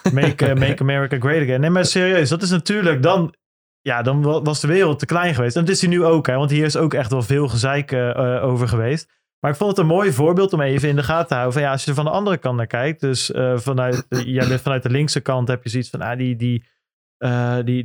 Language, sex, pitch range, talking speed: Dutch, male, 130-160 Hz, 260 wpm